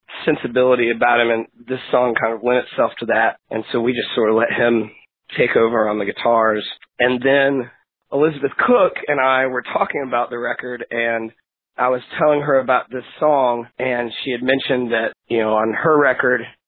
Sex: male